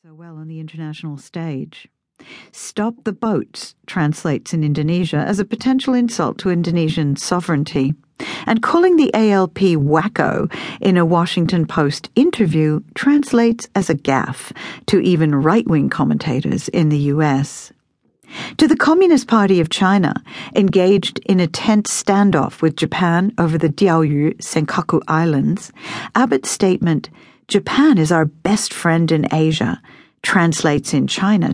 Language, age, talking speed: English, 50-69, 135 wpm